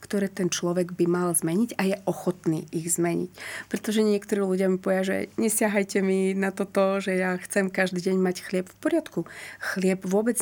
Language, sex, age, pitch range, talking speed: Slovak, female, 30-49, 175-200 Hz, 185 wpm